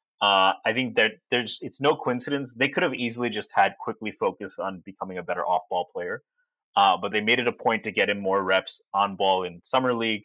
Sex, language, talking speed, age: male, English, 230 wpm, 20-39